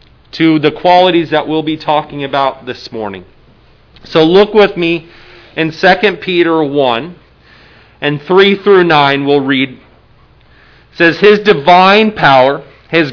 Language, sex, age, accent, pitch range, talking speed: English, male, 40-59, American, 150-195 Hz, 135 wpm